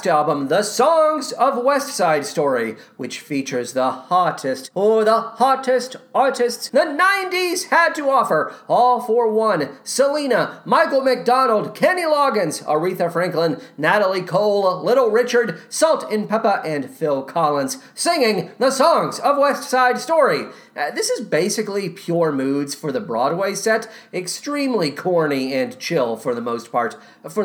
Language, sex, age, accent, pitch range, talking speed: English, male, 40-59, American, 180-270 Hz, 145 wpm